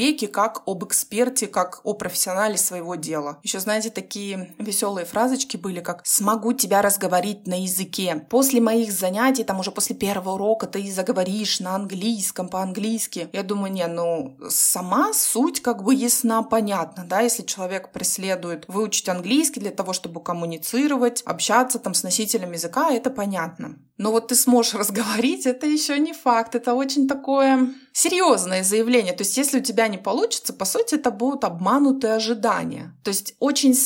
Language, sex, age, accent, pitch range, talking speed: Russian, female, 20-39, native, 190-240 Hz, 160 wpm